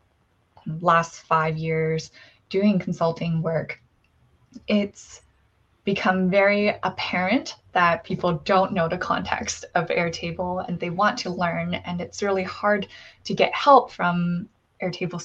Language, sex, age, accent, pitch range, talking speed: English, female, 20-39, American, 165-190 Hz, 125 wpm